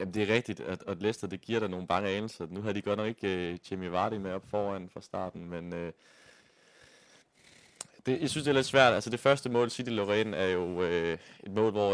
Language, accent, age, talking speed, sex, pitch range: Danish, native, 20-39, 235 wpm, male, 90-110 Hz